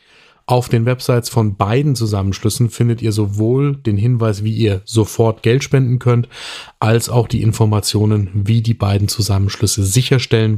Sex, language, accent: male, German, German